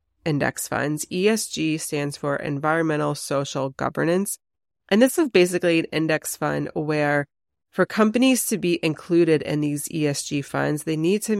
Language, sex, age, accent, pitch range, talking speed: English, female, 30-49, American, 145-175 Hz, 145 wpm